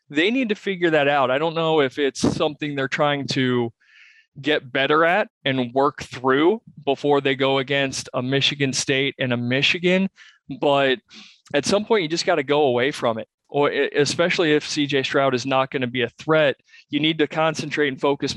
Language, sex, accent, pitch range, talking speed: English, male, American, 130-160 Hz, 200 wpm